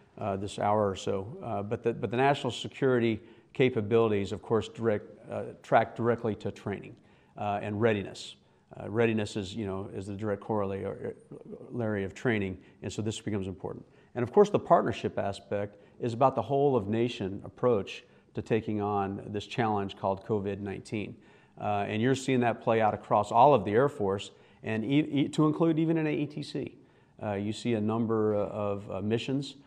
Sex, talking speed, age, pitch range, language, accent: male, 180 wpm, 40-59, 100-125 Hz, English, American